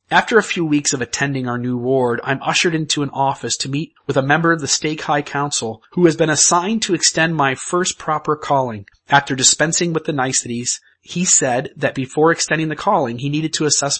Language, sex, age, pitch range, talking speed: English, male, 30-49, 130-165 Hz, 215 wpm